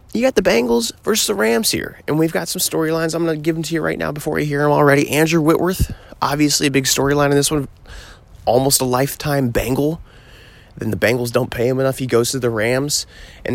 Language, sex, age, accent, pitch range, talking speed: English, male, 20-39, American, 110-140 Hz, 235 wpm